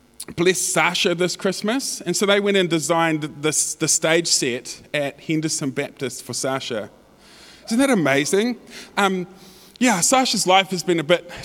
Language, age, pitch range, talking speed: English, 20-39, 140-185 Hz, 150 wpm